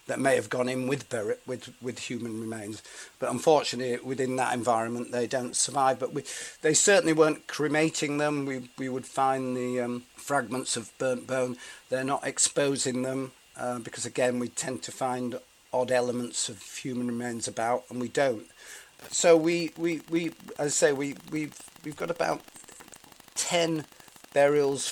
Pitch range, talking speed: 125-145 Hz, 165 wpm